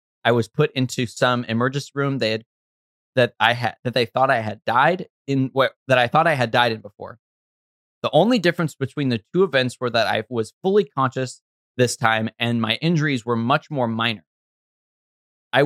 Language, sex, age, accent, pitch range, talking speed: English, male, 20-39, American, 110-135 Hz, 195 wpm